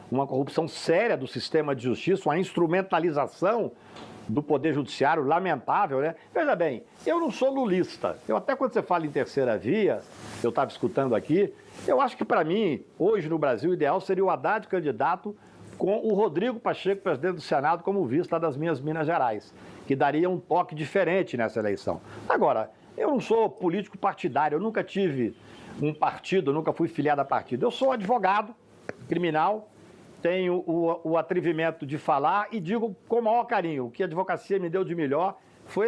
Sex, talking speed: male, 175 wpm